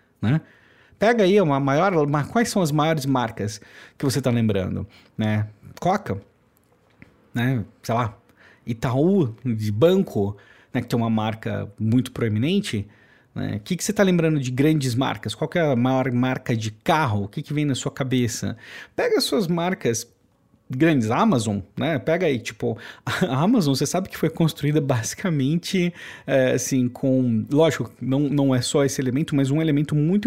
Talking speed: 170 wpm